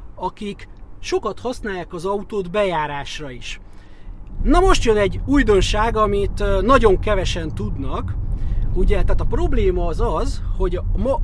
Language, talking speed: Hungarian, 130 wpm